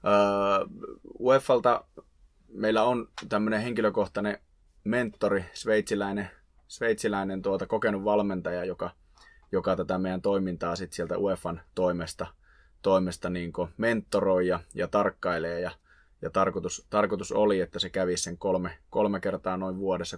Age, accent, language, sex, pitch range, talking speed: 20-39, native, Finnish, male, 85-95 Hz, 120 wpm